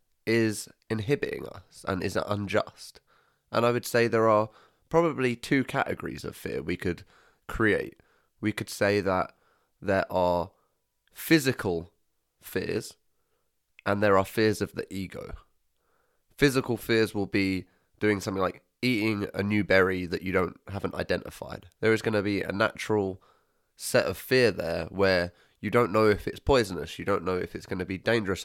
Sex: male